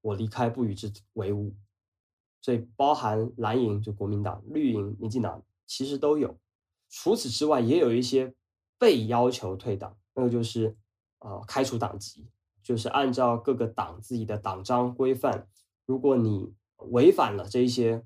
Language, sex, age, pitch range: Chinese, male, 20-39, 100-130 Hz